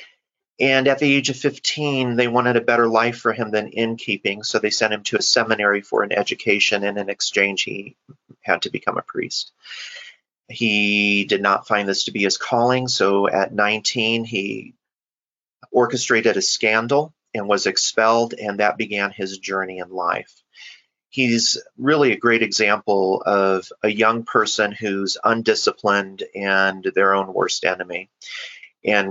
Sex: male